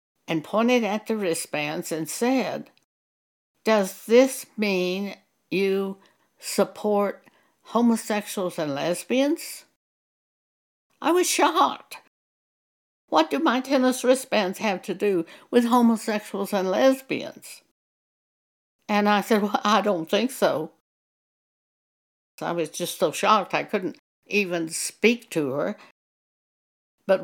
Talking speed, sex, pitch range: 110 wpm, female, 170-225 Hz